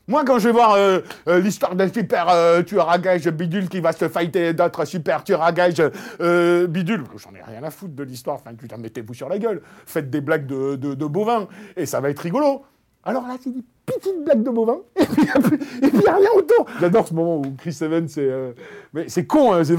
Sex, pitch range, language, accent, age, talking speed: male, 170-235 Hz, French, French, 50-69, 235 wpm